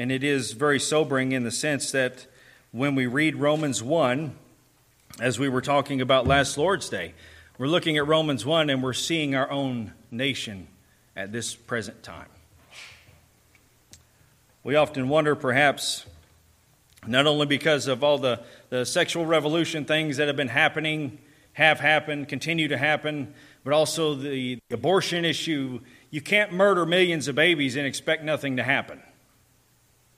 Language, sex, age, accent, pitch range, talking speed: English, male, 40-59, American, 125-155 Hz, 150 wpm